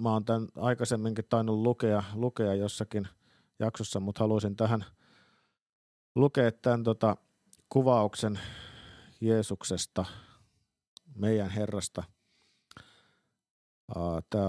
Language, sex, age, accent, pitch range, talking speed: Finnish, male, 50-69, native, 95-115 Hz, 80 wpm